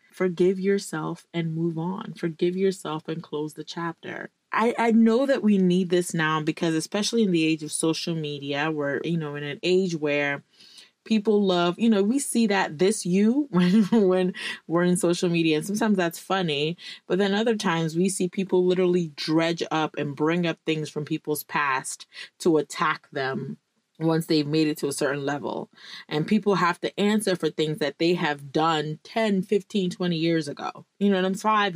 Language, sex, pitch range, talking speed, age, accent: English, female, 155-195 Hz, 190 wpm, 20-39, American